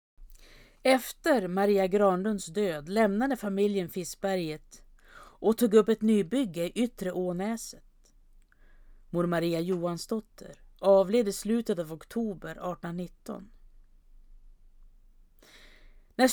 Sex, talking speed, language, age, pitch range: female, 90 wpm, Swedish, 40-59, 175-220 Hz